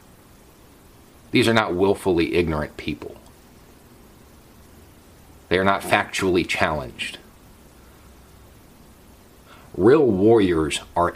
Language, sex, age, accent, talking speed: English, male, 40-59, American, 75 wpm